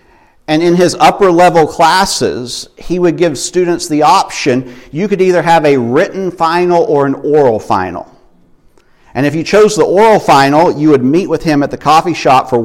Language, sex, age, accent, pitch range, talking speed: English, male, 50-69, American, 120-145 Hz, 185 wpm